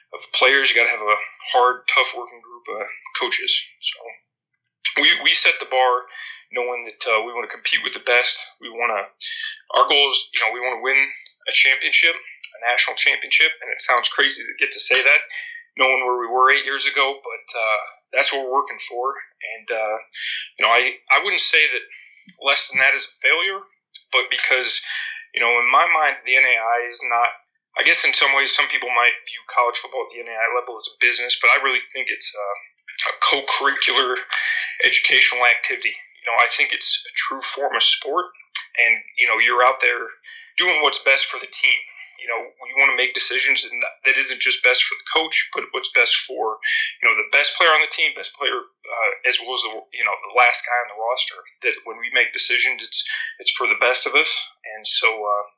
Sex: male